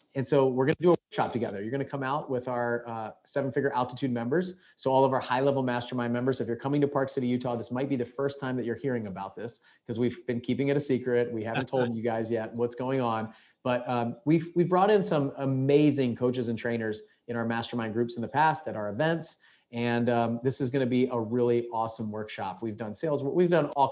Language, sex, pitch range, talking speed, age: English, male, 115-140 Hz, 250 wpm, 30-49